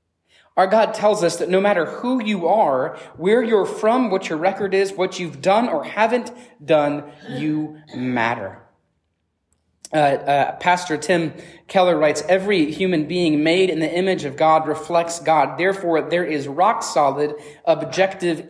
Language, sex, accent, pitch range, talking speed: English, male, American, 145-195 Hz, 150 wpm